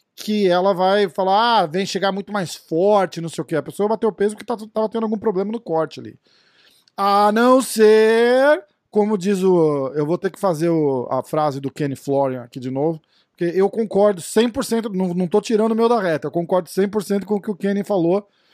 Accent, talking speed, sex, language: Brazilian, 215 wpm, male, Portuguese